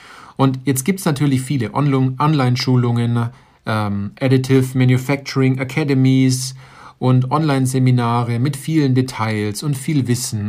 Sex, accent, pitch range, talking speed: male, German, 115-140 Hz, 105 wpm